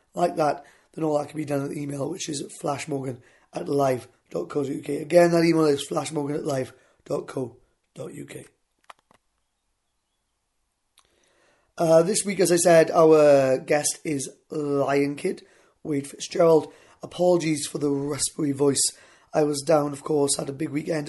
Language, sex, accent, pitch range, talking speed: English, male, British, 140-165 Hz, 140 wpm